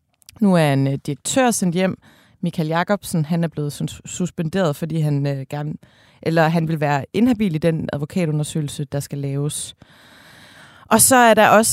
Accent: native